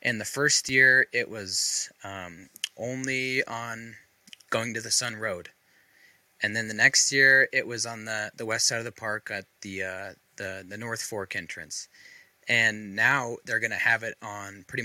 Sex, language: male, English